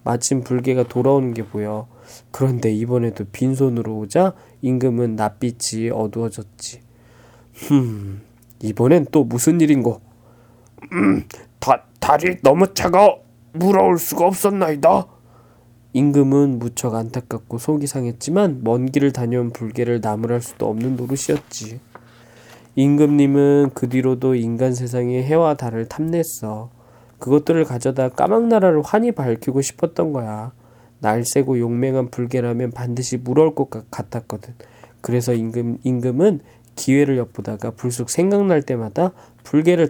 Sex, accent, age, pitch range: male, native, 20-39, 120-150 Hz